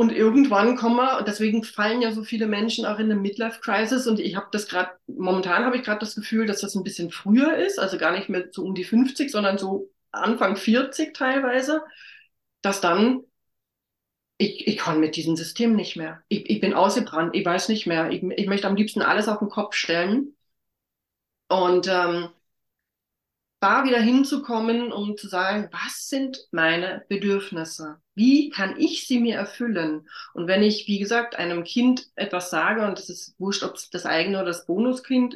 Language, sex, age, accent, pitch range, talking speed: German, female, 40-59, German, 180-235 Hz, 190 wpm